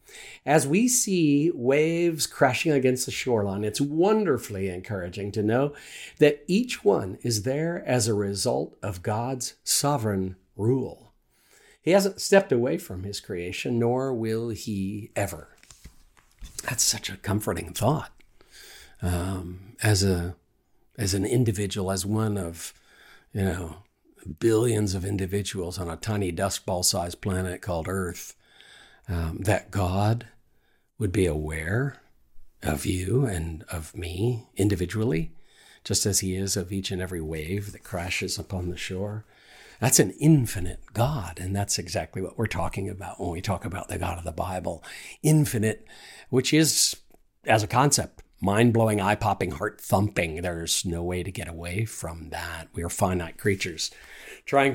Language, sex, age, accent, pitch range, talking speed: English, male, 50-69, American, 90-120 Hz, 145 wpm